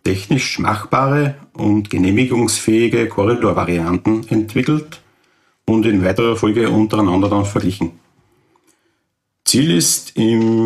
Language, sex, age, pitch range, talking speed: German, male, 50-69, 95-115 Hz, 90 wpm